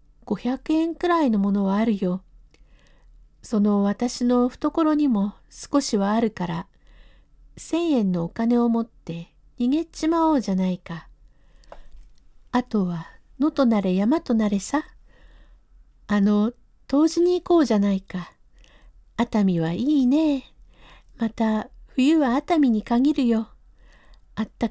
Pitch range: 215-285 Hz